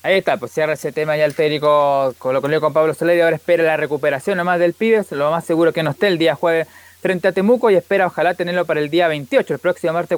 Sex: male